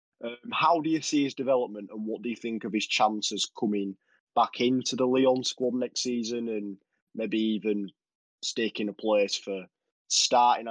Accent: British